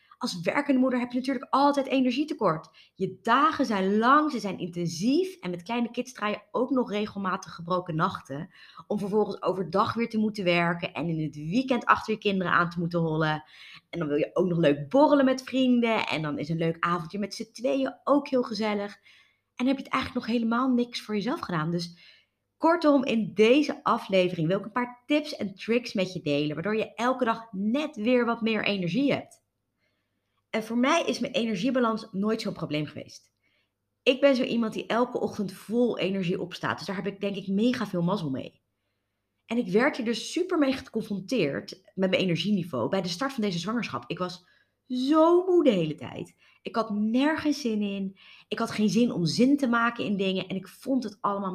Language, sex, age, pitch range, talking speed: Dutch, female, 20-39, 175-250 Hz, 205 wpm